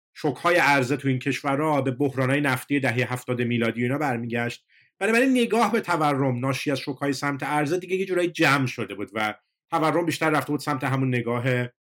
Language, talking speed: Persian, 190 wpm